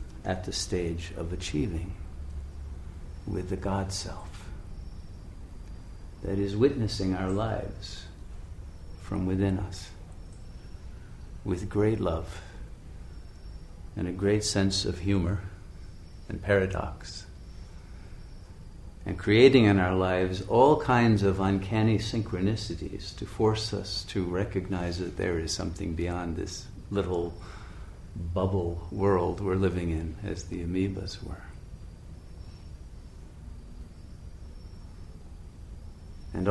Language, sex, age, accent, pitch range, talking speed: English, male, 50-69, American, 85-100 Hz, 95 wpm